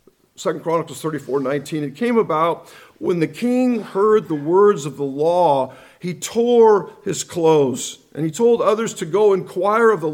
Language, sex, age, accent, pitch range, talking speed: English, male, 50-69, American, 145-200 Hz, 165 wpm